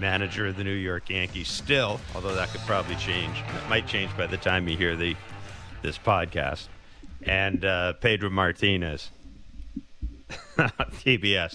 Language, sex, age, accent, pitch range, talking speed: English, male, 50-69, American, 85-100 Hz, 145 wpm